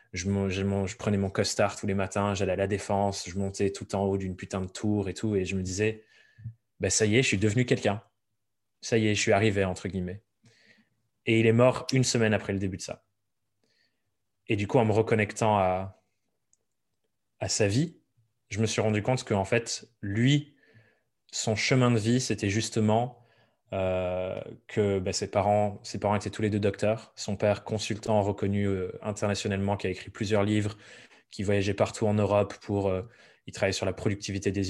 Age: 20-39